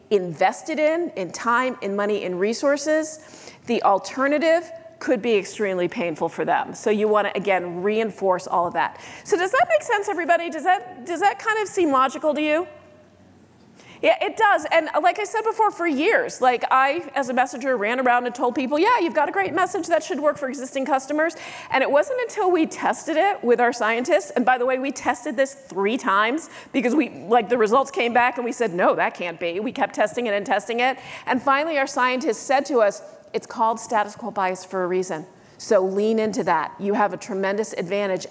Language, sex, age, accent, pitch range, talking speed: English, female, 40-59, American, 205-310 Hz, 215 wpm